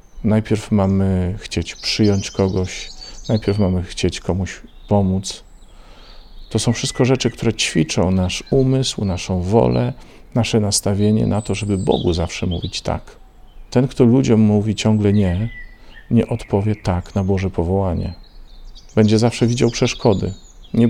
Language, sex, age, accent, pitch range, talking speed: Polish, male, 50-69, native, 90-115 Hz, 130 wpm